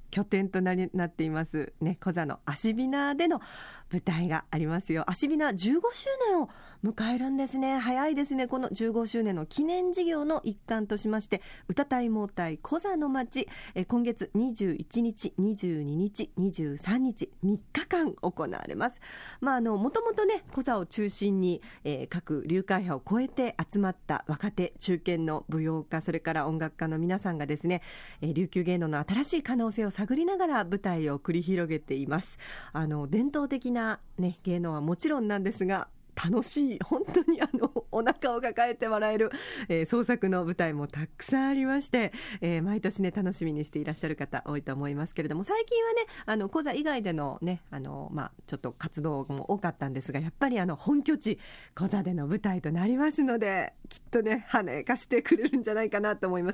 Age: 40-59